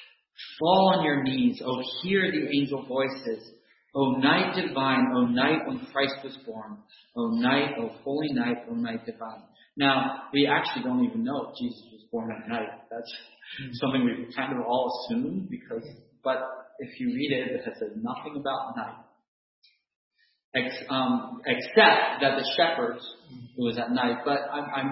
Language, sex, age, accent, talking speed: English, male, 40-59, American, 170 wpm